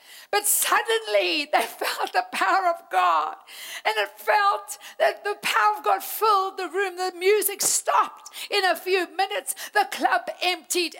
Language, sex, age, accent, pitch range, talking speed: English, female, 60-79, British, 310-385 Hz, 160 wpm